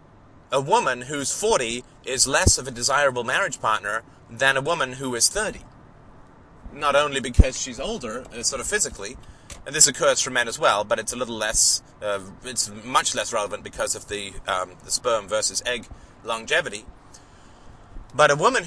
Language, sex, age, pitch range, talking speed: English, male, 30-49, 95-135 Hz, 175 wpm